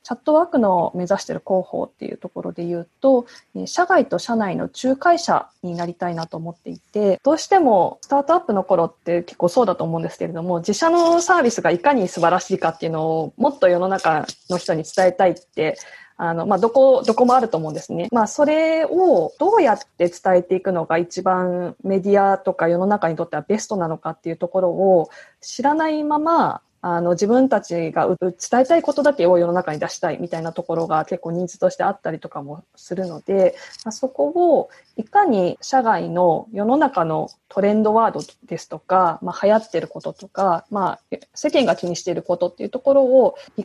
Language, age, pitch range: Japanese, 20-39, 175-265 Hz